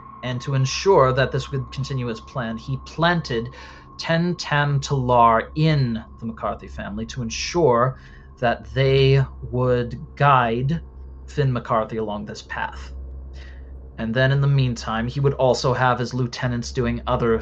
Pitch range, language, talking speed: 115-135 Hz, English, 145 wpm